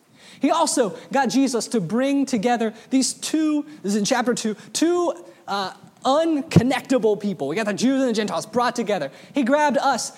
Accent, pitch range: American, 215-270 Hz